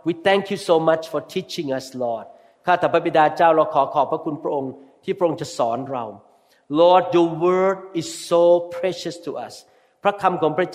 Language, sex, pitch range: Thai, male, 150-200 Hz